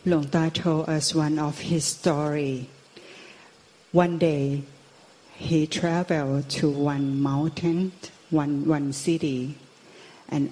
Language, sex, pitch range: Thai, female, 150-170 Hz